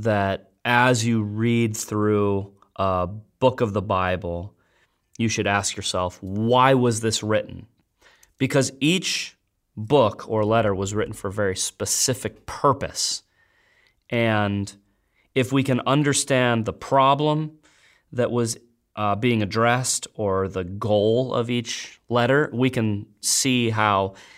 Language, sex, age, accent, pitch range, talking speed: English, male, 30-49, American, 100-125 Hz, 130 wpm